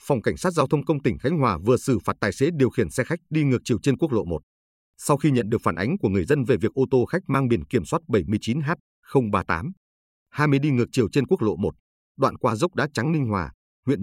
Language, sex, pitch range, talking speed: Vietnamese, male, 85-140 Hz, 265 wpm